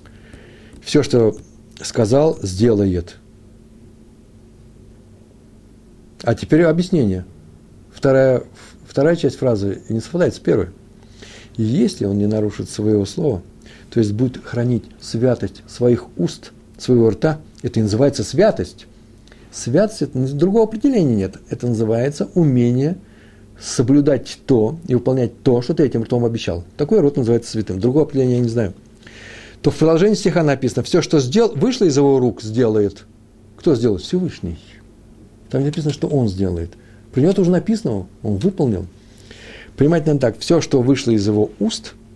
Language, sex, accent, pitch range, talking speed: Russian, male, native, 105-135 Hz, 135 wpm